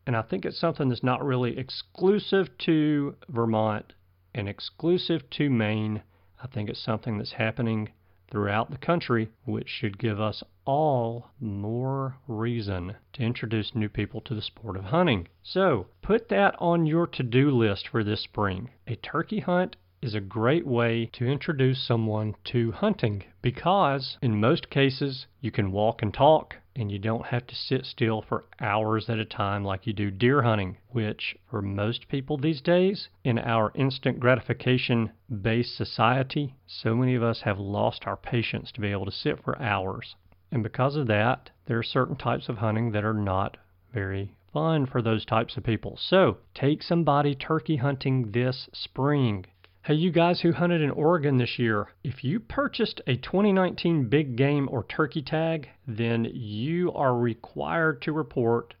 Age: 40-59